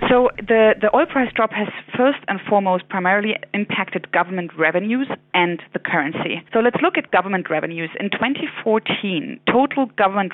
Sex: female